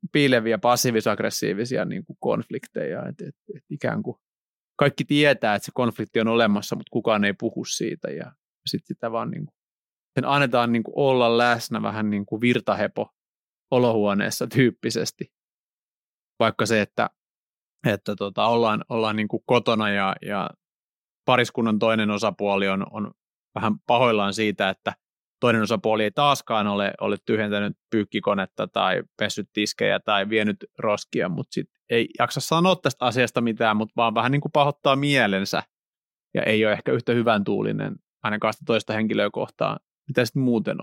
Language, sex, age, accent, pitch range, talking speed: Finnish, male, 30-49, native, 110-135 Hz, 140 wpm